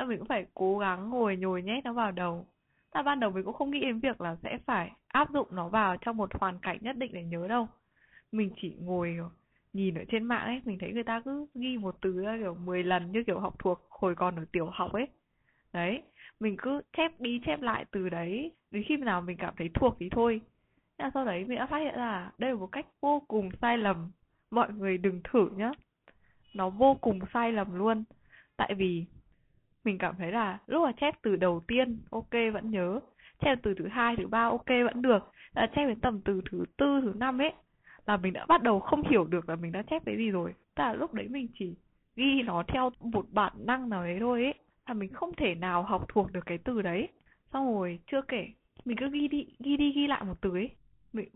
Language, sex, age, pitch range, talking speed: Vietnamese, female, 20-39, 185-255 Hz, 235 wpm